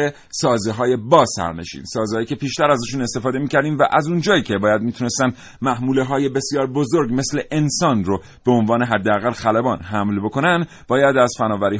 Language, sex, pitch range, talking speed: Persian, male, 105-145 Hz, 170 wpm